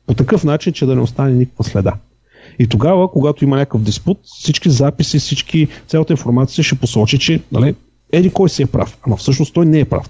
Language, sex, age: Bulgarian, male, 40-59